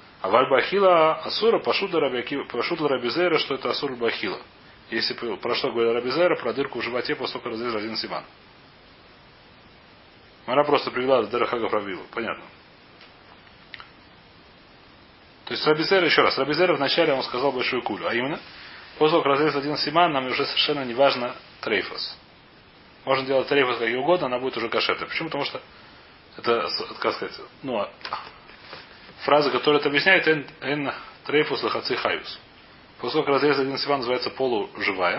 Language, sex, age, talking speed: Russian, male, 30-49, 145 wpm